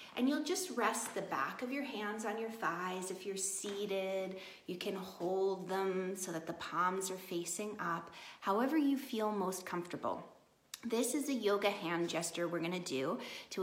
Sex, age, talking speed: female, 30-49, 180 wpm